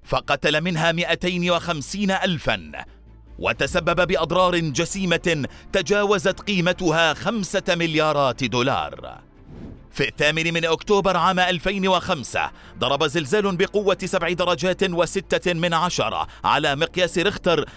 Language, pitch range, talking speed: Arabic, 165-190 Hz, 100 wpm